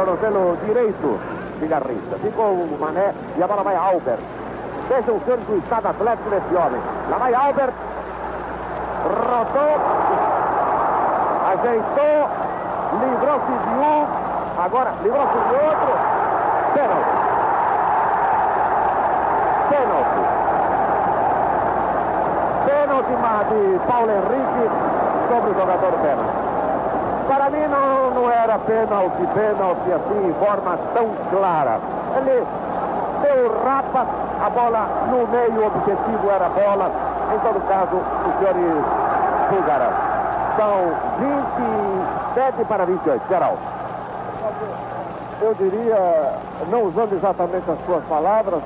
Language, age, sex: English, 60-79, male